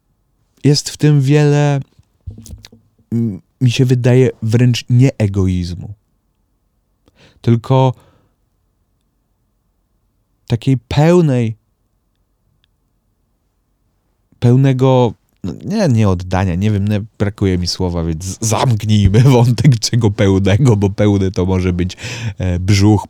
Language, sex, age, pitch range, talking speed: Polish, male, 30-49, 95-120 Hz, 90 wpm